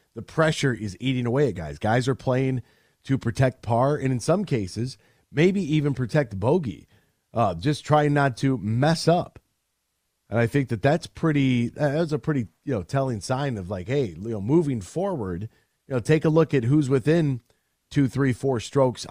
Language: English